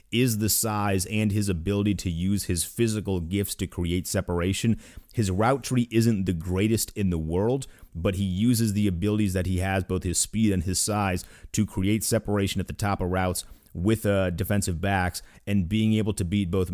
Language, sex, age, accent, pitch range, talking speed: English, male, 30-49, American, 90-110 Hz, 195 wpm